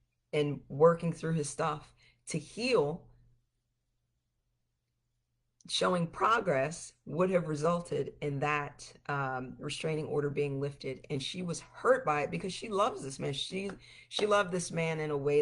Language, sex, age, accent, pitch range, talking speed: English, female, 40-59, American, 120-175 Hz, 150 wpm